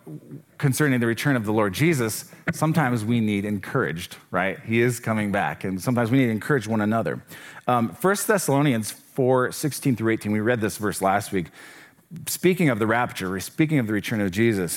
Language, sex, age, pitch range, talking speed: English, male, 40-59, 115-145 Hz, 190 wpm